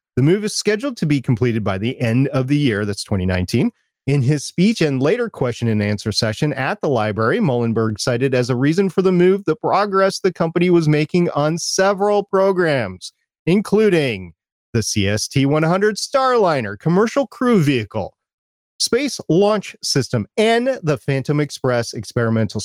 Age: 30-49